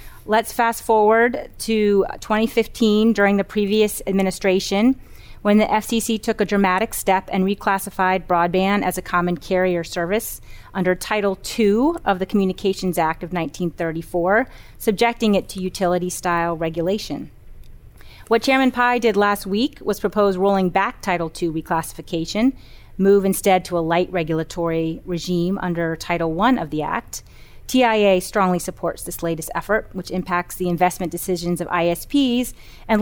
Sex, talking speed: female, 140 wpm